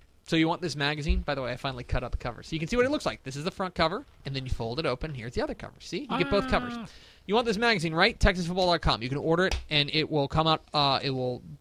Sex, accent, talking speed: male, American, 310 wpm